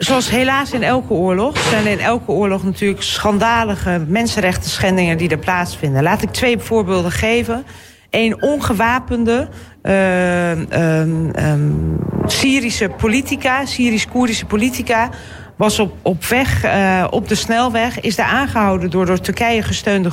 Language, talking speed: Dutch, 135 wpm